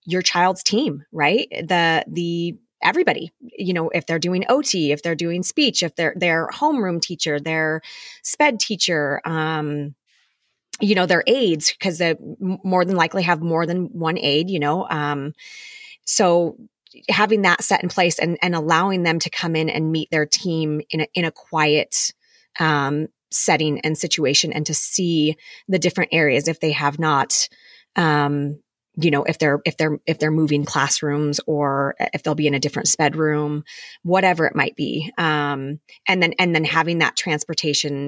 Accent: American